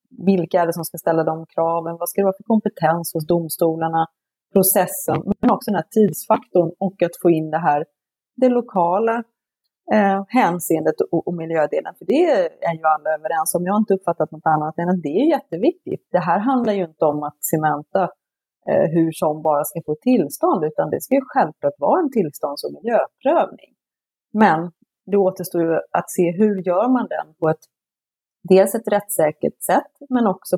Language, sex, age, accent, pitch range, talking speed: Swedish, female, 30-49, native, 160-205 Hz, 190 wpm